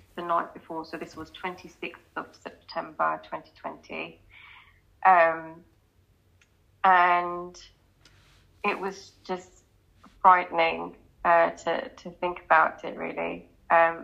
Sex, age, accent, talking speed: female, 20-39, British, 100 wpm